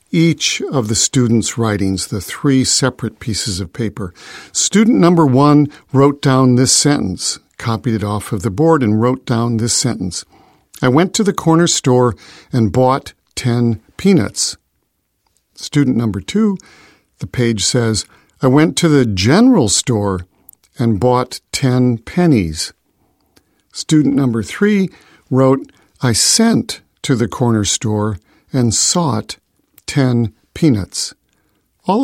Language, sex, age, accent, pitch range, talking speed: English, male, 50-69, American, 110-150 Hz, 130 wpm